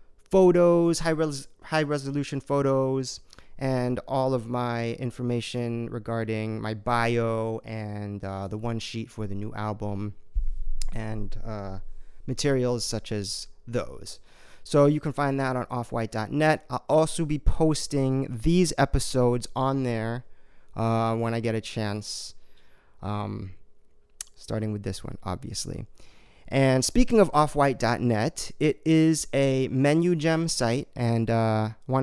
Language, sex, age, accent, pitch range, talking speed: English, male, 30-49, American, 110-130 Hz, 120 wpm